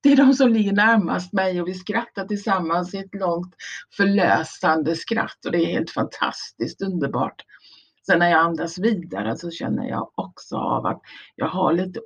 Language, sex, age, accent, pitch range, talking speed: Swedish, female, 60-79, native, 175-230 Hz, 180 wpm